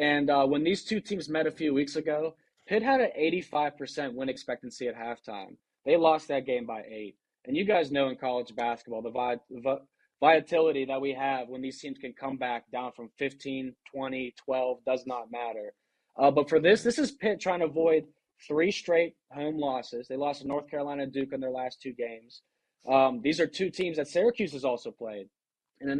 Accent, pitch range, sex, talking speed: American, 125-150 Hz, male, 210 wpm